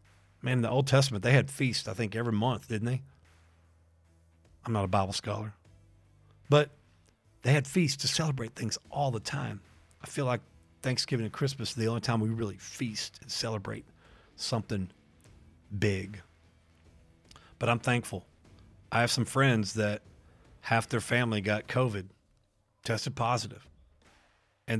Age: 40-59